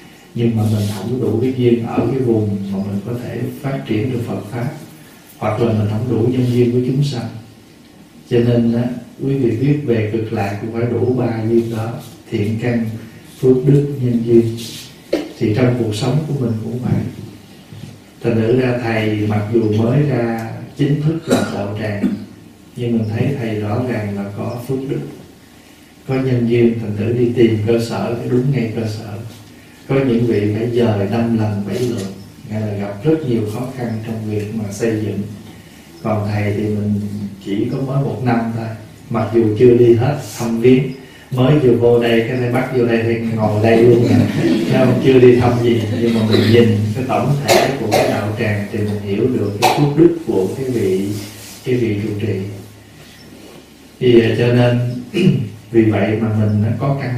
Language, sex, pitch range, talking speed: Vietnamese, male, 105-125 Hz, 195 wpm